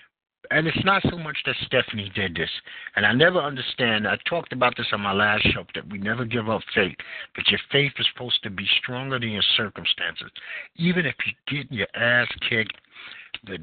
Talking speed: 205 wpm